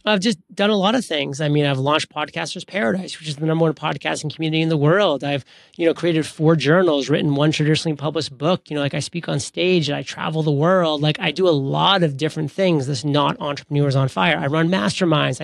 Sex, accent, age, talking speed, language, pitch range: male, American, 30-49, 240 wpm, English, 150-175 Hz